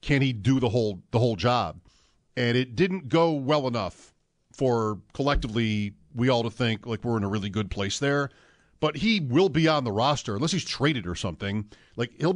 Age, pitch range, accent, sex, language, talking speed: 50-69, 120-160 Hz, American, male, English, 205 wpm